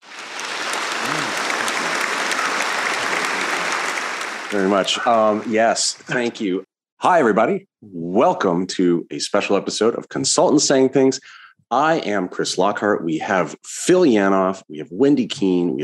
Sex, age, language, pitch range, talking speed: male, 30-49, English, 90-115 Hz, 115 wpm